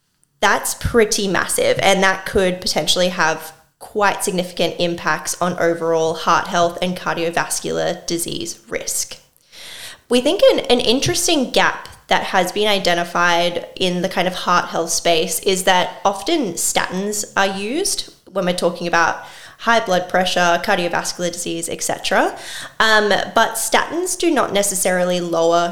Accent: Australian